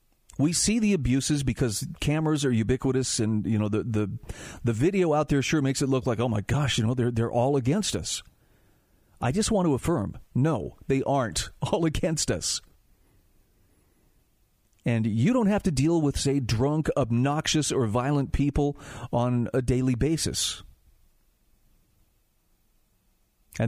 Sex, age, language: male, 40-59, English